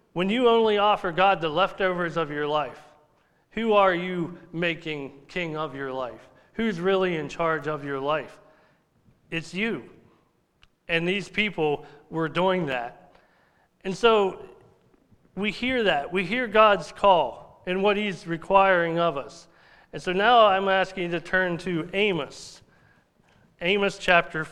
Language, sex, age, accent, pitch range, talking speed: English, male, 40-59, American, 150-190 Hz, 145 wpm